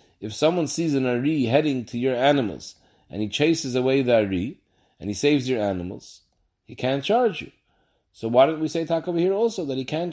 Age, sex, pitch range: 30-49, male, 115-160 Hz